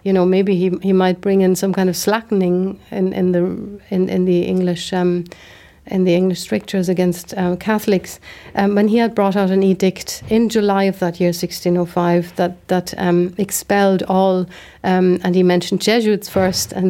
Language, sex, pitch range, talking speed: English, female, 180-205 Hz, 195 wpm